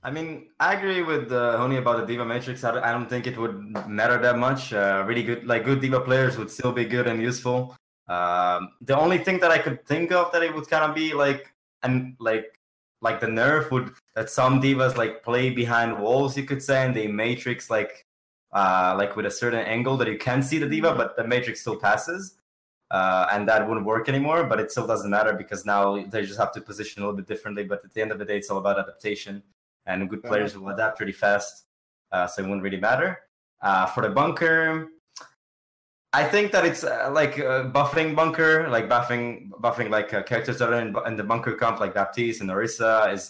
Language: English